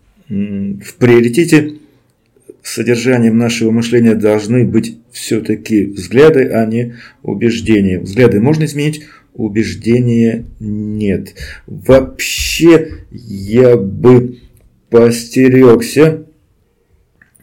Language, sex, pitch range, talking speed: Russian, male, 110-125 Hz, 70 wpm